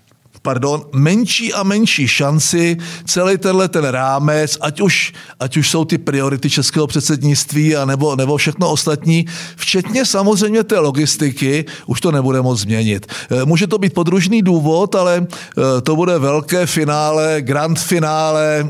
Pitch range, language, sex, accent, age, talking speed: 140-195 Hz, Czech, male, native, 50-69, 140 wpm